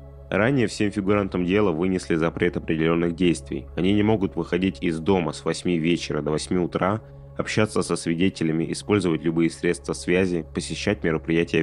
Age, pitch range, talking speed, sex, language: 30-49, 75-95 Hz, 150 wpm, male, Russian